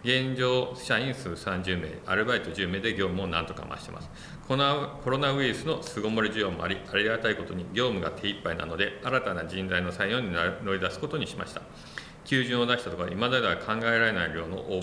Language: Japanese